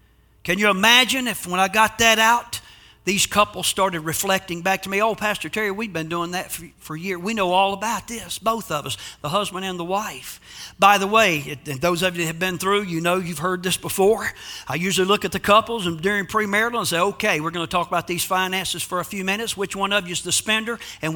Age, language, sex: 50-69, English, male